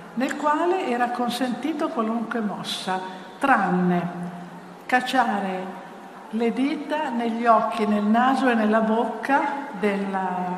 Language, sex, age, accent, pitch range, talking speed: Italian, female, 60-79, native, 200-240 Hz, 100 wpm